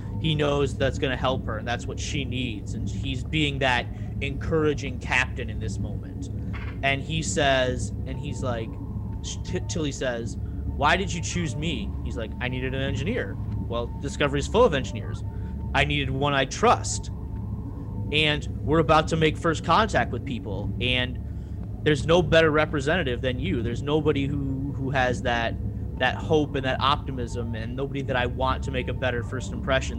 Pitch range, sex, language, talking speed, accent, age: 100-135 Hz, male, English, 180 wpm, American, 30-49